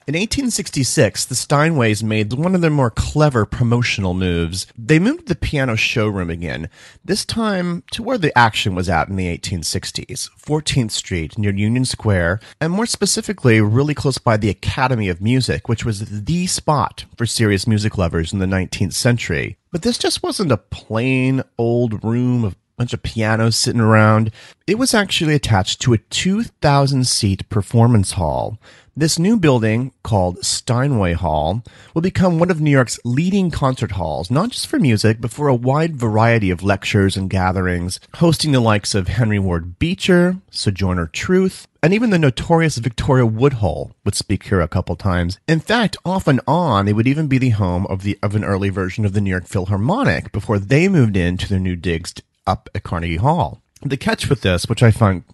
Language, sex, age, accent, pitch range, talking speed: English, male, 30-49, American, 100-140 Hz, 185 wpm